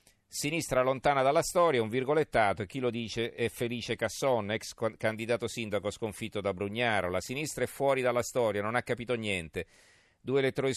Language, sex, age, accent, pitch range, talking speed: Italian, male, 40-59, native, 95-120 Hz, 175 wpm